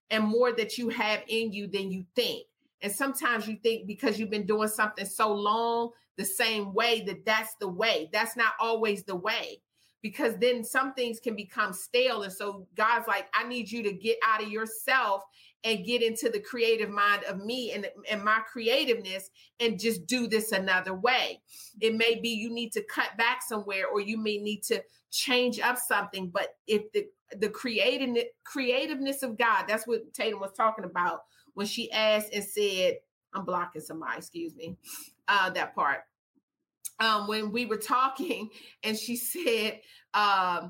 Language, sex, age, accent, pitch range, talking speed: English, female, 40-59, American, 210-245 Hz, 180 wpm